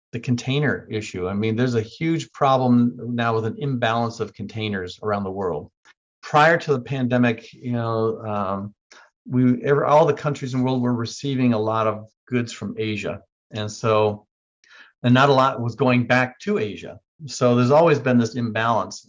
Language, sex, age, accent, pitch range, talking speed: English, male, 40-59, American, 110-125 Hz, 180 wpm